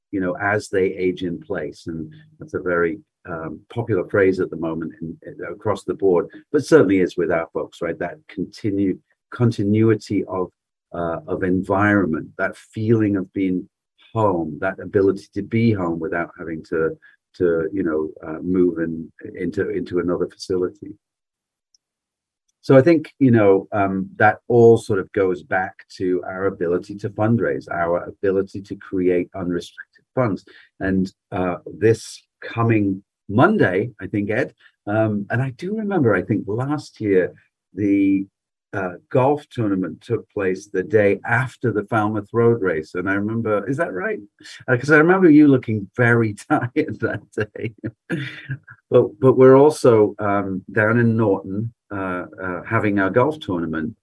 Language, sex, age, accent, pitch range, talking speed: English, male, 40-59, British, 90-115 Hz, 160 wpm